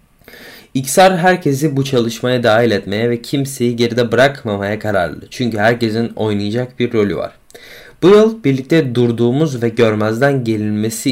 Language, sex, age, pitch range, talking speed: Turkish, male, 20-39, 110-135 Hz, 130 wpm